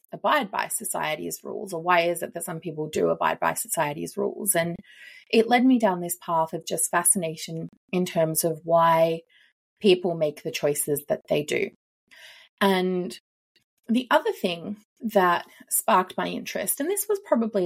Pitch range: 165-210 Hz